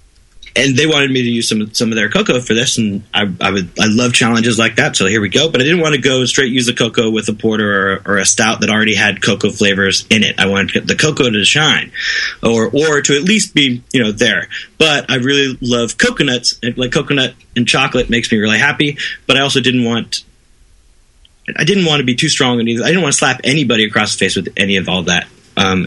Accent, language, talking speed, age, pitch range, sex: American, English, 255 wpm, 30-49, 100-125 Hz, male